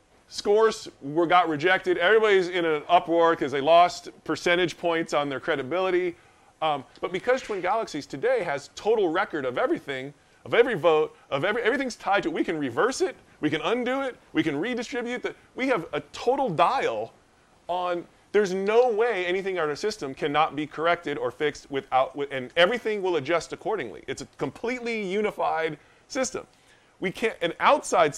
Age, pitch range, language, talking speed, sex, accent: 30-49, 150-210 Hz, English, 175 wpm, male, American